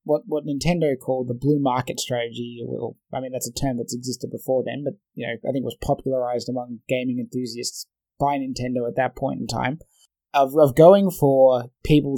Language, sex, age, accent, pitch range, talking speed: English, male, 20-39, Australian, 125-140 Hz, 205 wpm